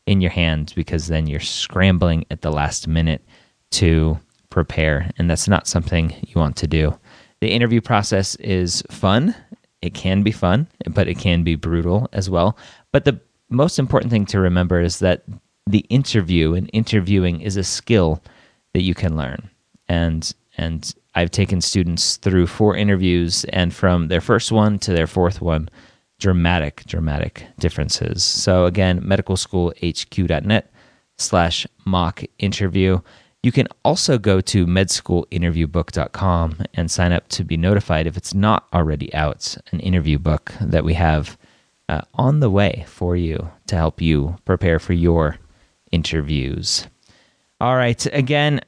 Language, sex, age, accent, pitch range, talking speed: English, male, 30-49, American, 80-100 Hz, 150 wpm